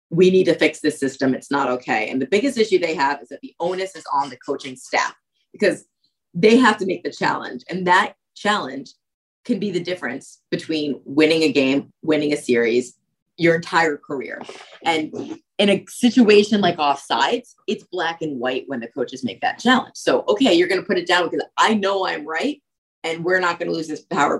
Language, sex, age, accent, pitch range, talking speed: English, female, 20-39, American, 155-220 Hz, 210 wpm